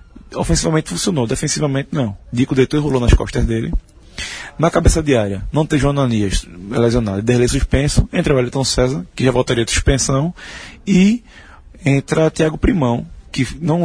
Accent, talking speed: Brazilian, 145 wpm